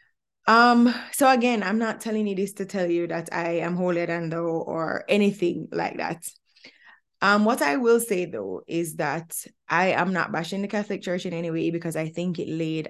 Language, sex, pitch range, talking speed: English, female, 165-205 Hz, 205 wpm